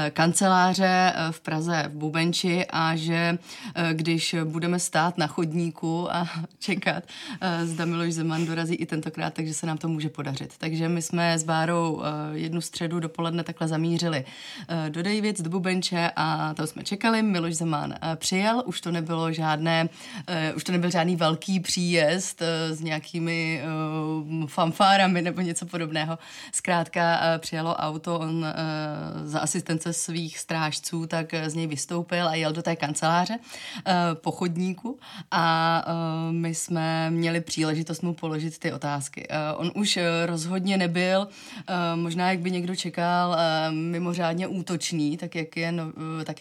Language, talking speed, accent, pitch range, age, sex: Czech, 135 wpm, native, 160-175 Hz, 30-49, female